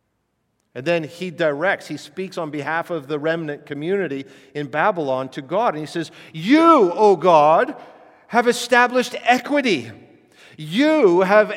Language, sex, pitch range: English, male, 150-225 Hz